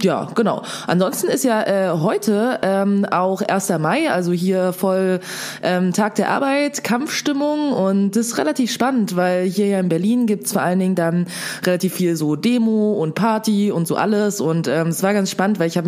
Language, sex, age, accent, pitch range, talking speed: German, female, 20-39, German, 165-200 Hz, 200 wpm